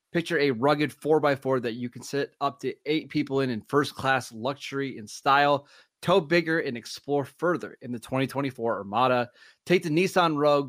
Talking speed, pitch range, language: 185 wpm, 120-150 Hz, English